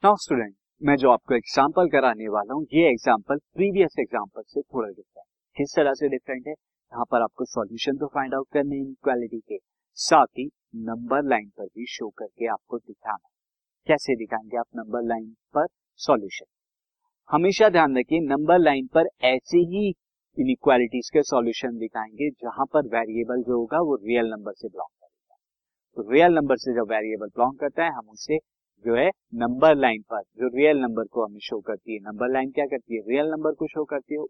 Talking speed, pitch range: 170 wpm, 125-165 Hz